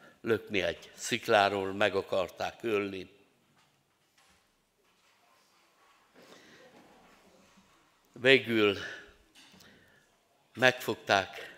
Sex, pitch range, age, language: male, 105-130 Hz, 60-79, Hungarian